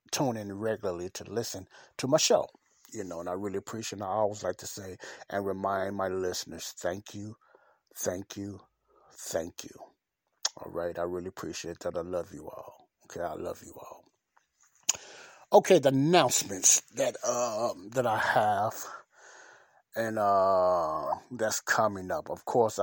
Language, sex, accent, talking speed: English, male, American, 160 wpm